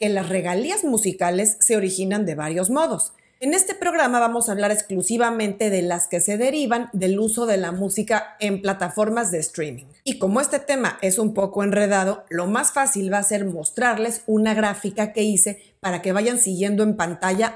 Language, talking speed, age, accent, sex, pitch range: Spanish, 190 wpm, 40-59, Mexican, female, 185-235 Hz